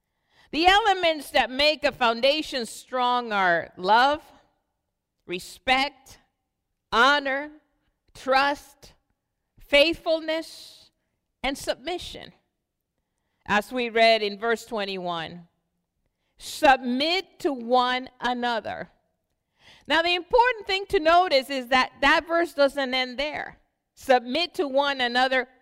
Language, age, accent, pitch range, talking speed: English, 50-69, American, 245-330 Hz, 100 wpm